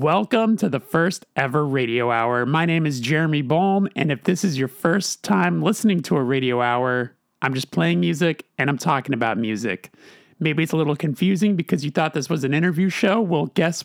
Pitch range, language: 130-180 Hz, English